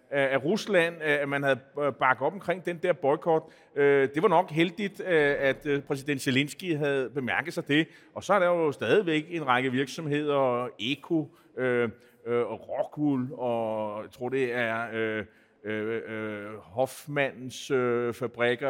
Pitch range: 125-165 Hz